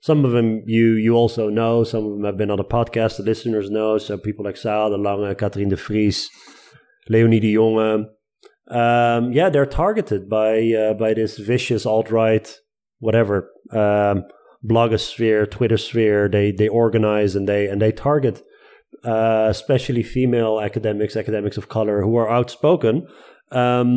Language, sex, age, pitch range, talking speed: Dutch, male, 30-49, 105-130 Hz, 160 wpm